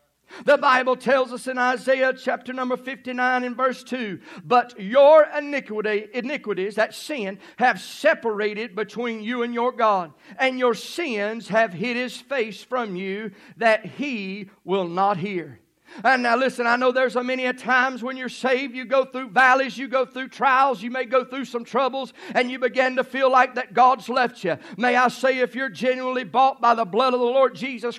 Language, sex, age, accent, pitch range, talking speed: English, male, 50-69, American, 225-260 Hz, 195 wpm